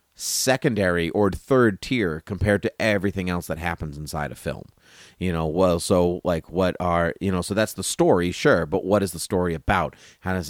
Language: English